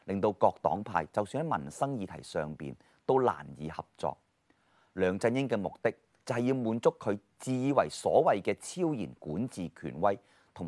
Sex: male